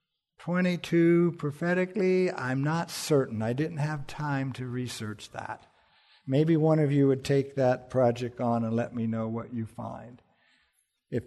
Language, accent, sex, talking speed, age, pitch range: English, American, male, 155 wpm, 60-79, 115-155 Hz